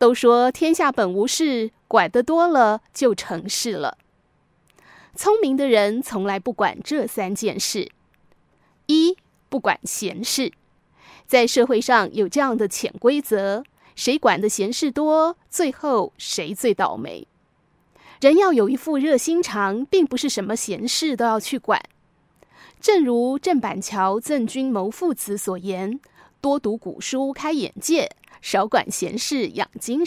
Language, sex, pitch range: Chinese, female, 215-295 Hz